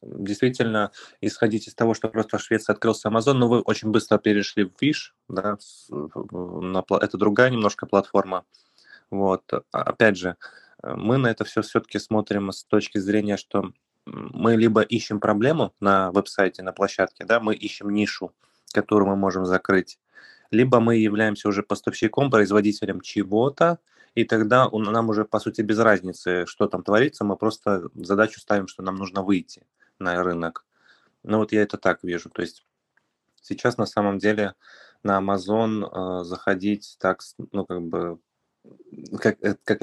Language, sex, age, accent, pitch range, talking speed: Russian, male, 20-39, native, 95-110 Hz, 155 wpm